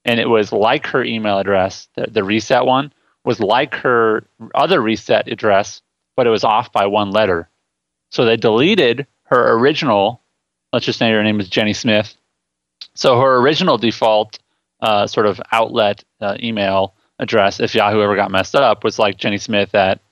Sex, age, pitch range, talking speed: male, 30-49, 100-115 Hz, 175 wpm